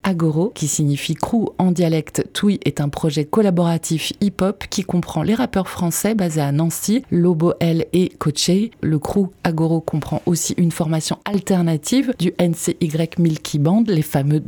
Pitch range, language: 155-195 Hz, French